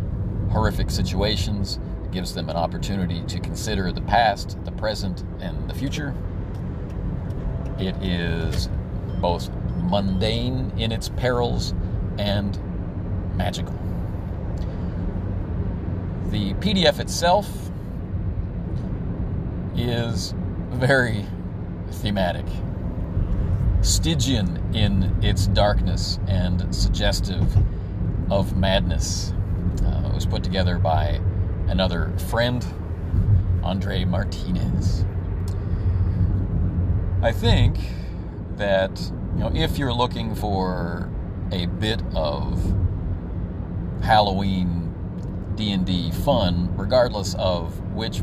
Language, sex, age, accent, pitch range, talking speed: English, male, 40-59, American, 90-100 Hz, 80 wpm